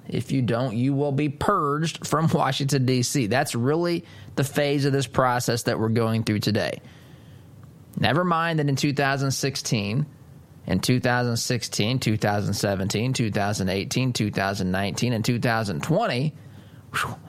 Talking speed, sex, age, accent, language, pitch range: 120 wpm, male, 20-39, American, English, 110-145 Hz